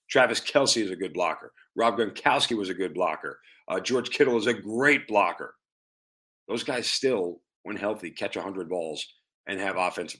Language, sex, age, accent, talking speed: English, male, 40-59, American, 175 wpm